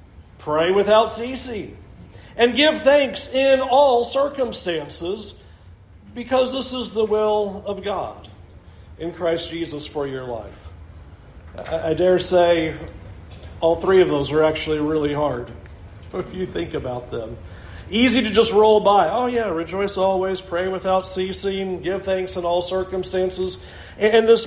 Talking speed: 145 wpm